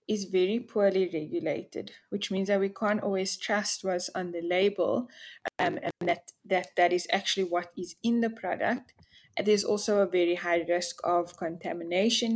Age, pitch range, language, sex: 20-39, 175-200 Hz, English, female